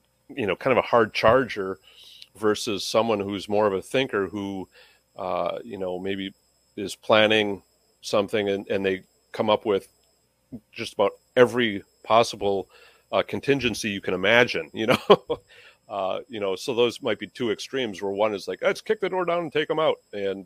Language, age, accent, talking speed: English, 40-59, American, 180 wpm